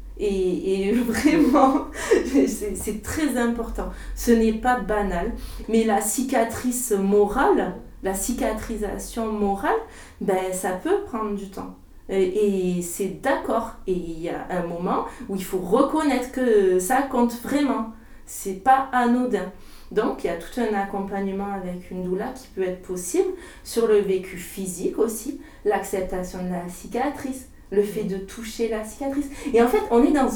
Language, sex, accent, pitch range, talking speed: French, female, French, 205-270 Hz, 160 wpm